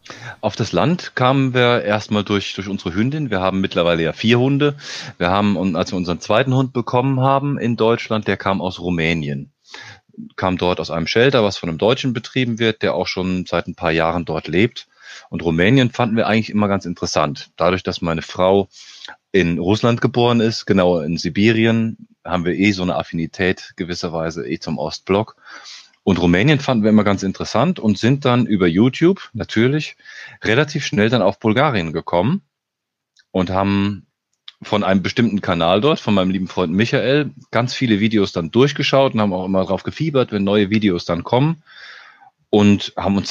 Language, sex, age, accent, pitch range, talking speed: German, male, 30-49, German, 90-120 Hz, 180 wpm